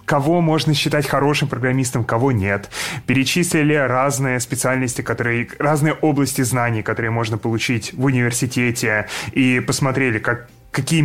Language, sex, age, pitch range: Russian, male, 20-39, 120-145 Hz